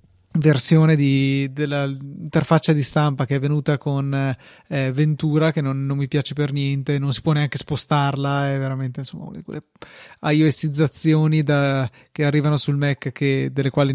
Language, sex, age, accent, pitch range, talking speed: Italian, male, 30-49, native, 140-165 Hz, 150 wpm